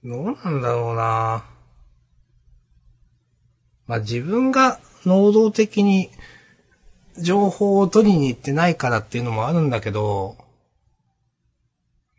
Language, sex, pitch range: Japanese, male, 105-150 Hz